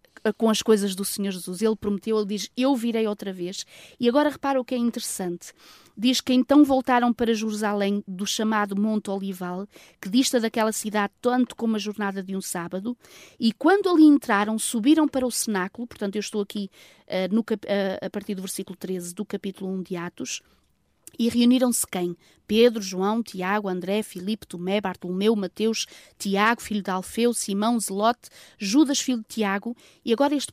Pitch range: 200-250 Hz